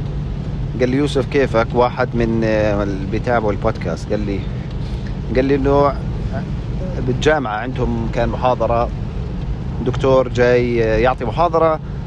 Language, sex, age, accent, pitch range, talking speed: English, male, 40-59, Lebanese, 125-165 Hz, 105 wpm